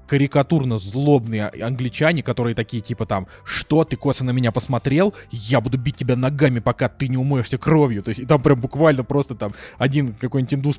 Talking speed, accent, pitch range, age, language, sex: 190 wpm, native, 120-145 Hz, 20-39, Russian, male